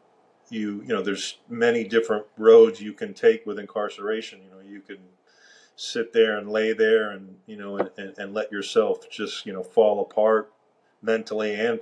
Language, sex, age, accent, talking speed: English, male, 40-59, American, 185 wpm